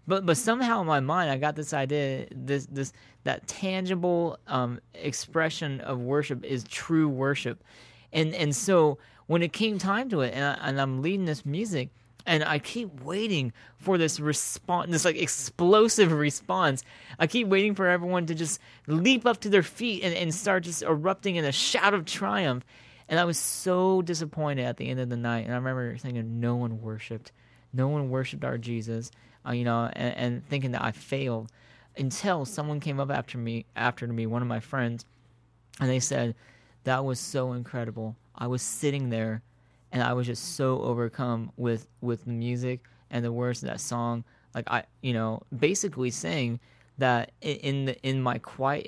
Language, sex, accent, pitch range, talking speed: English, male, American, 120-160 Hz, 190 wpm